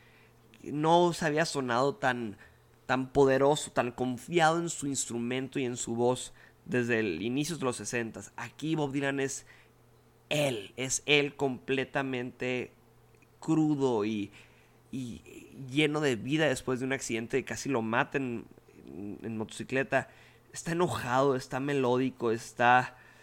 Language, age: Spanish, 30-49